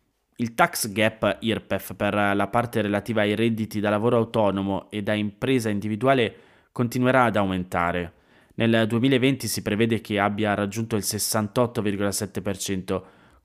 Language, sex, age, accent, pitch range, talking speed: Italian, male, 20-39, native, 100-125 Hz, 130 wpm